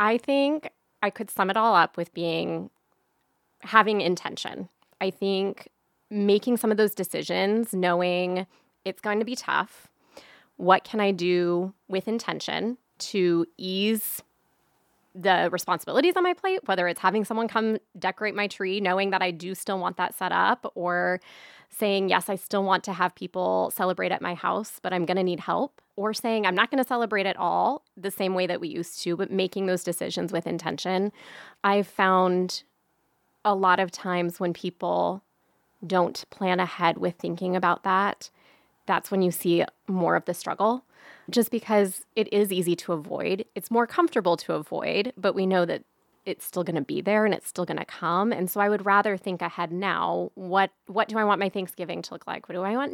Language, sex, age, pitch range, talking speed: English, female, 20-39, 180-215 Hz, 190 wpm